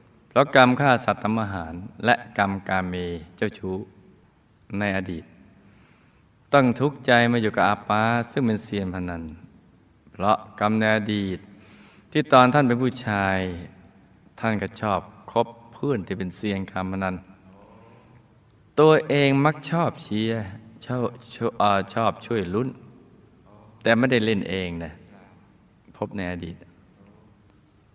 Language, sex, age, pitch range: Thai, male, 20-39, 95-115 Hz